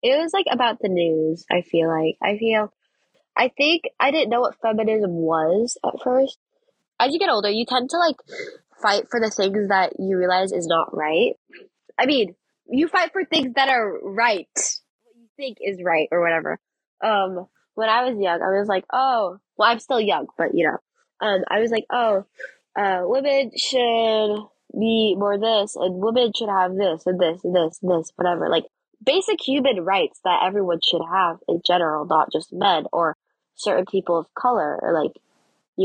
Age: 10-29